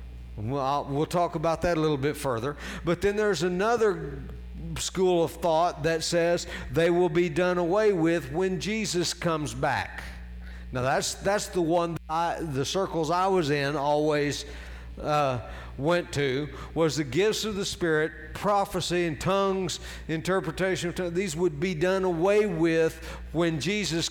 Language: English